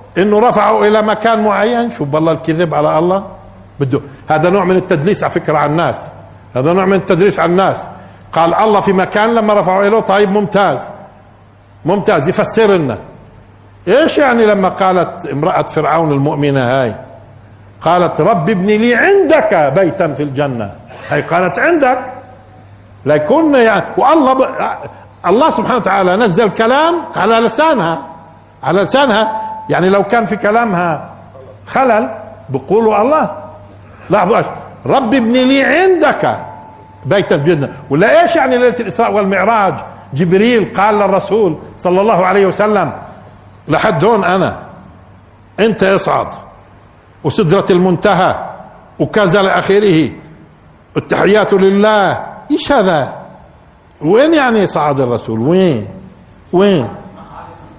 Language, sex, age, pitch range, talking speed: Arabic, male, 50-69, 140-220 Hz, 120 wpm